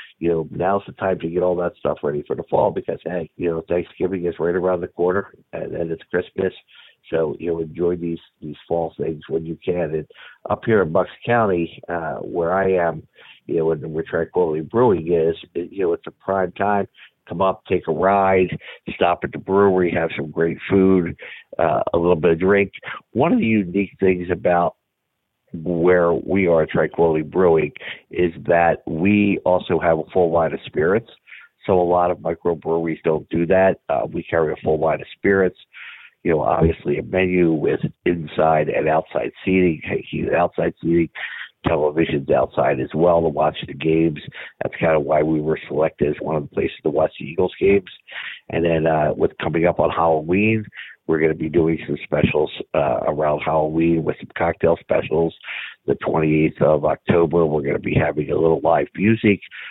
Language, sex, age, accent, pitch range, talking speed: English, male, 50-69, American, 80-95 Hz, 195 wpm